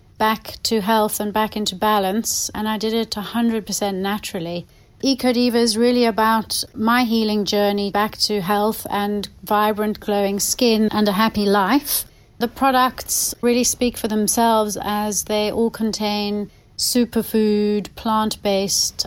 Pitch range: 195-230 Hz